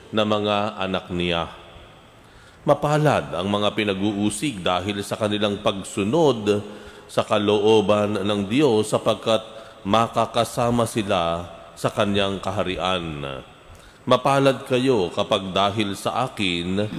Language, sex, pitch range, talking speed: Filipino, male, 85-115 Hz, 100 wpm